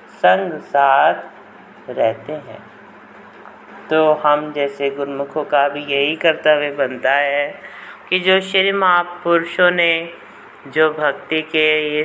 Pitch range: 135-155 Hz